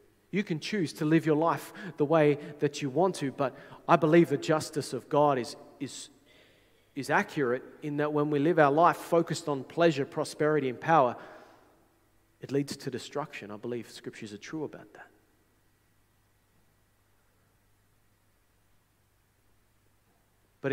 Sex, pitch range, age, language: male, 105-140 Hz, 30-49, English